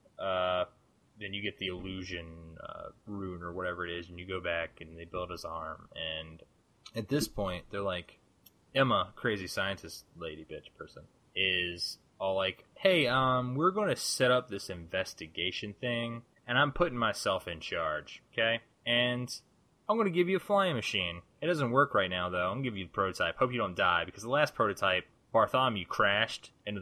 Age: 20-39